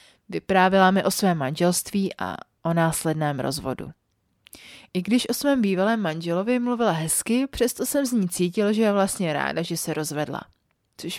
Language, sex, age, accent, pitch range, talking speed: Czech, female, 30-49, native, 155-200 Hz, 160 wpm